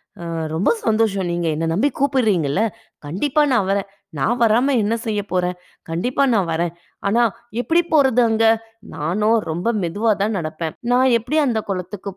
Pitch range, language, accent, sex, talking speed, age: 160-220 Hz, Tamil, native, female, 150 wpm, 20-39